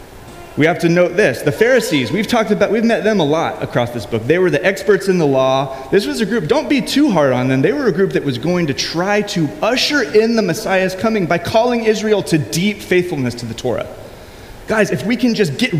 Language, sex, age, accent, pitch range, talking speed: English, male, 30-49, American, 135-210 Hz, 245 wpm